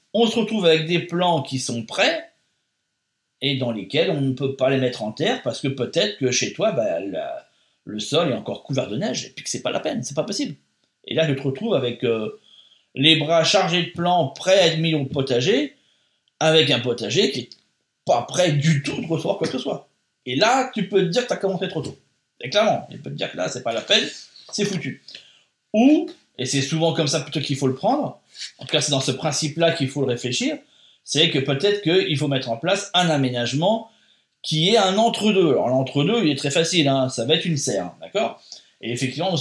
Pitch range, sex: 130-185 Hz, male